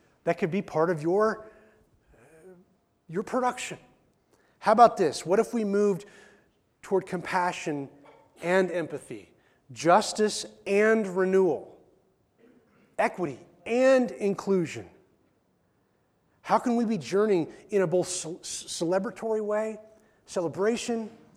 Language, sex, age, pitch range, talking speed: English, male, 30-49, 165-215 Hz, 100 wpm